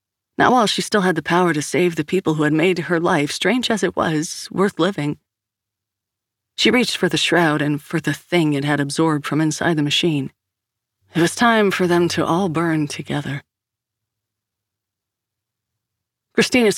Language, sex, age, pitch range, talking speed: English, female, 40-59, 115-190 Hz, 175 wpm